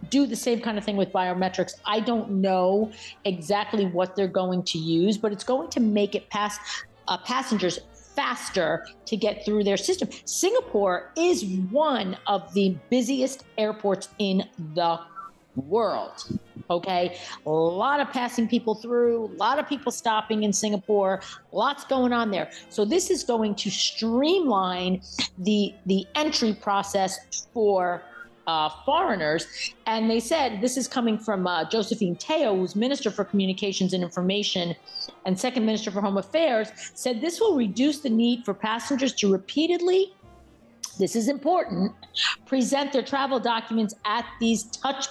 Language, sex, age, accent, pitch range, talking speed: English, female, 40-59, American, 190-250 Hz, 155 wpm